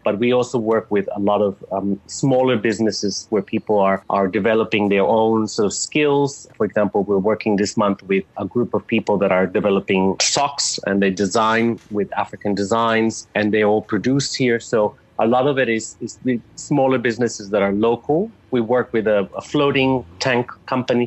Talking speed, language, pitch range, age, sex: 195 wpm, English, 100-120 Hz, 30-49, male